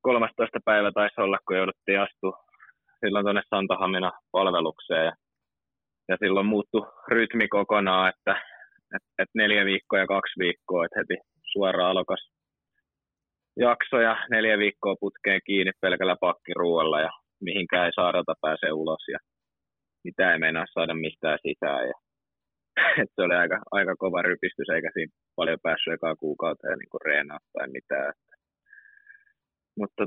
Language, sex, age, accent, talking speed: Finnish, male, 20-39, native, 135 wpm